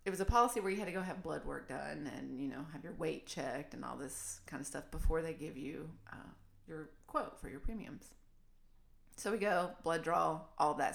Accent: American